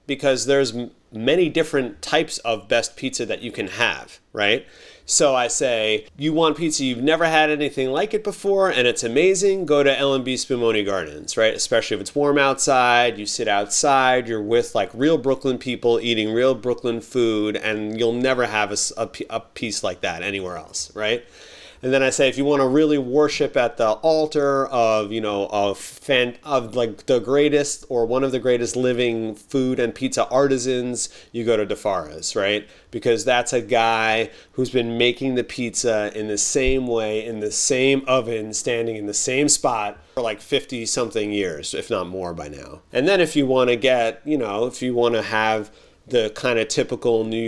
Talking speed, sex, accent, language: 195 wpm, male, American, English